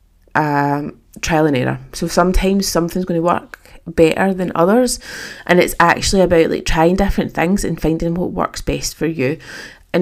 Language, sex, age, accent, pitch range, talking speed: English, female, 20-39, British, 160-195 Hz, 175 wpm